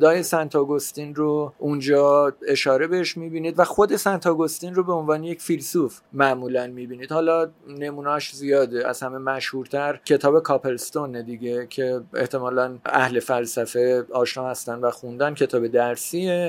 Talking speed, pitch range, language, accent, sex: 140 wpm, 130-160 Hz, English, Canadian, male